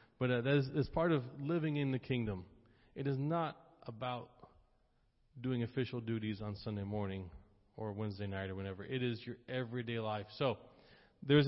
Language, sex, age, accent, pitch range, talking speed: English, male, 30-49, American, 110-135 Hz, 175 wpm